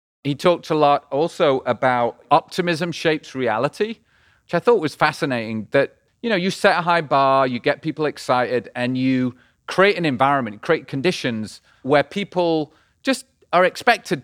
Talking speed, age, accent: 160 wpm, 30-49, British